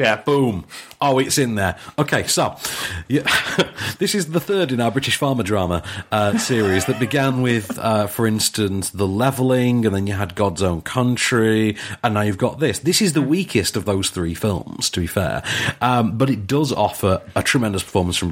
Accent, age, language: British, 40-59, English